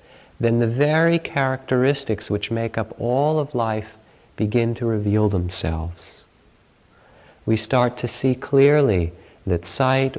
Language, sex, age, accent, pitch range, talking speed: English, male, 50-69, American, 100-130 Hz, 125 wpm